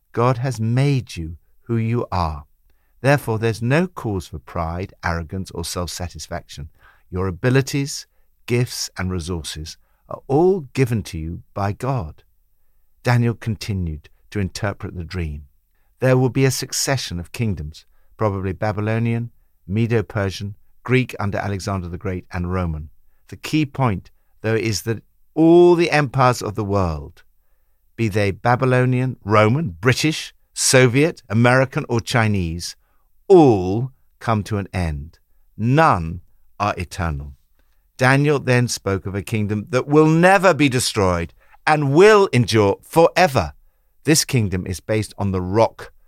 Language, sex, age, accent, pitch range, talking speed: English, male, 60-79, British, 90-125 Hz, 135 wpm